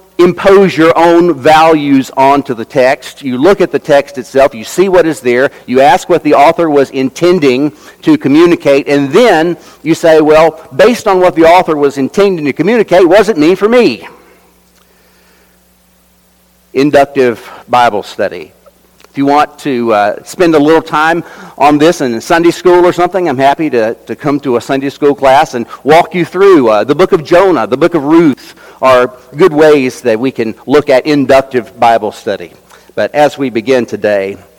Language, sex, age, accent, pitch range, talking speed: English, male, 50-69, American, 110-165 Hz, 180 wpm